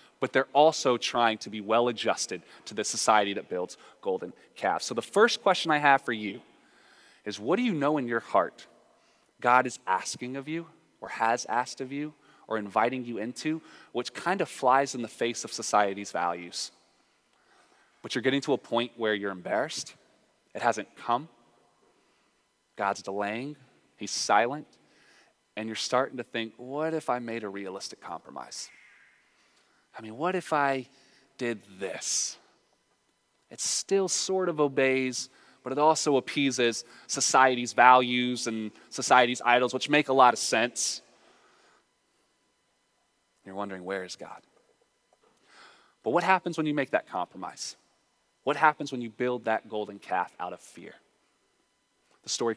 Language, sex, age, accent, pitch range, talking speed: English, male, 20-39, American, 110-145 Hz, 155 wpm